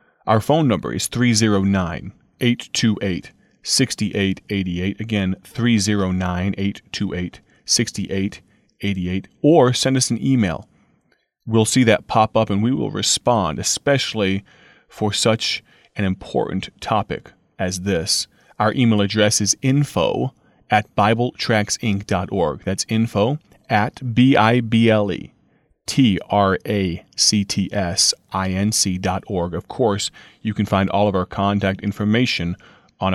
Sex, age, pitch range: male, 30-49, 100-120 Hz